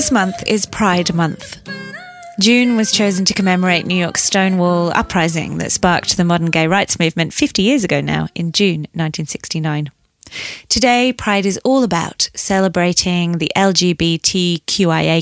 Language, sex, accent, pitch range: English, female, British, 165-200 Hz